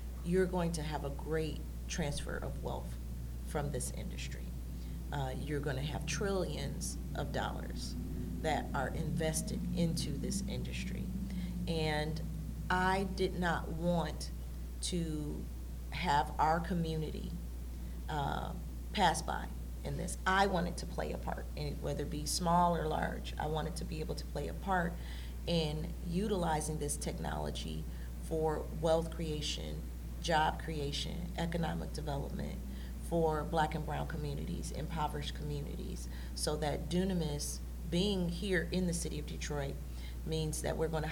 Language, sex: English, female